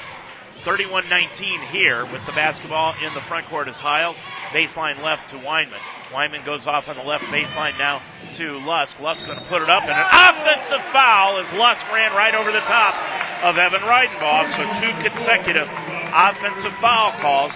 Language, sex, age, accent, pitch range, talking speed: English, male, 40-59, American, 145-190 Hz, 180 wpm